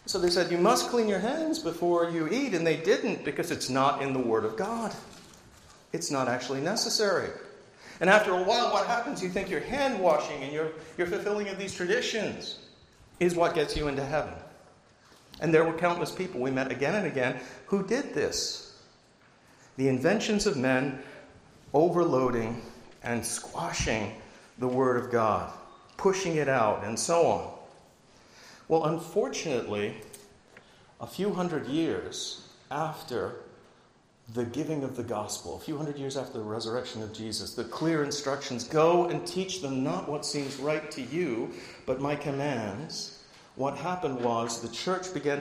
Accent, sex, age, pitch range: American, male, 50-69, 130-195 Hz